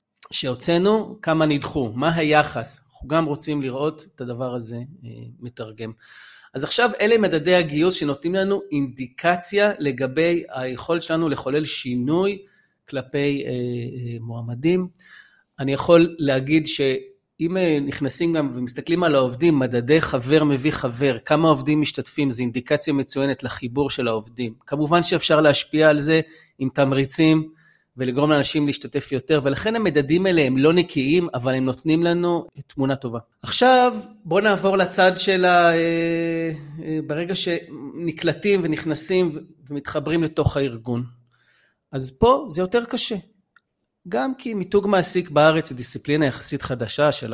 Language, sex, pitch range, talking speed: Hebrew, male, 130-170 Hz, 130 wpm